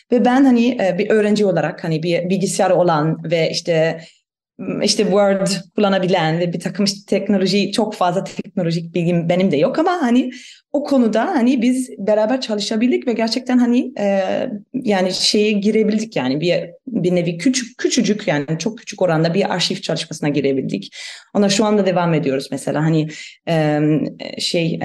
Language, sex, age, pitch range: Turkish, female, 30-49, 160-215 Hz